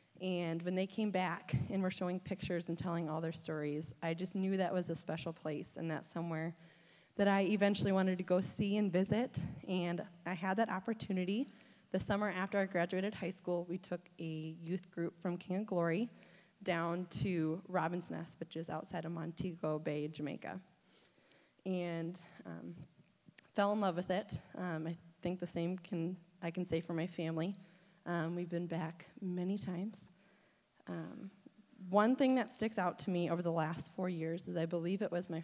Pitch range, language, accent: 165-190 Hz, English, American